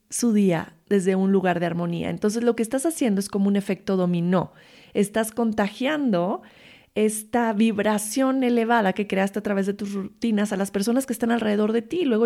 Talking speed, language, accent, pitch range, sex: 185 wpm, Spanish, Mexican, 200-245 Hz, female